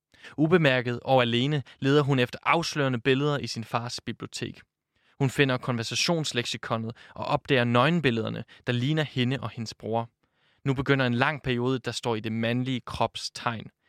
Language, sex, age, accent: Danish, male, 20-39, native